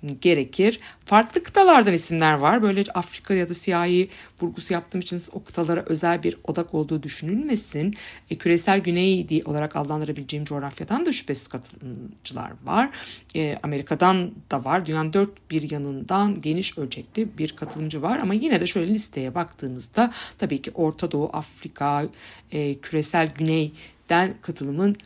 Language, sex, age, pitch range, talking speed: Turkish, female, 60-79, 155-195 Hz, 140 wpm